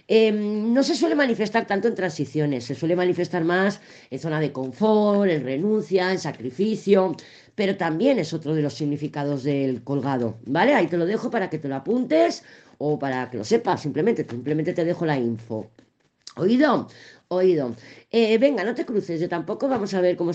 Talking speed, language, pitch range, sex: 185 wpm, Spanish, 145-210 Hz, female